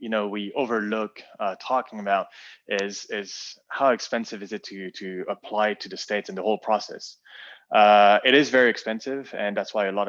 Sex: male